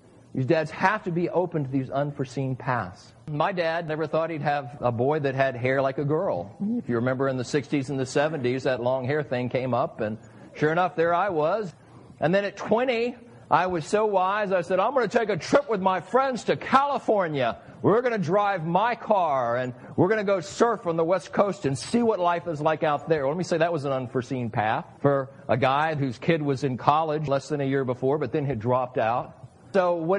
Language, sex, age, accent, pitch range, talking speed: English, male, 50-69, American, 140-190 Hz, 235 wpm